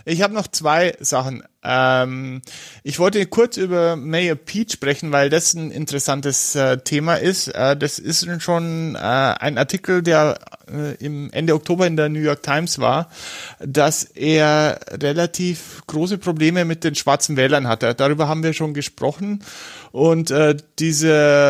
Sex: male